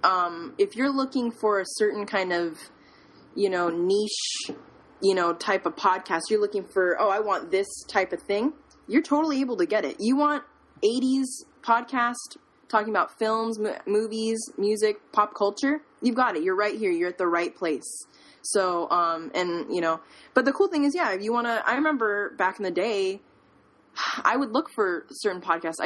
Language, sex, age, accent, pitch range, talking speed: English, female, 20-39, American, 175-235 Hz, 190 wpm